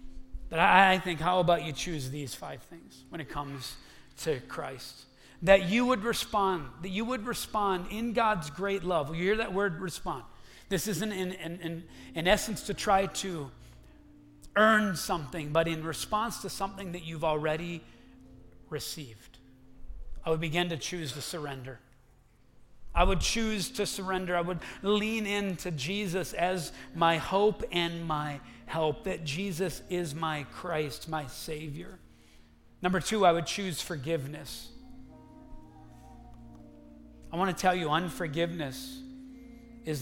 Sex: male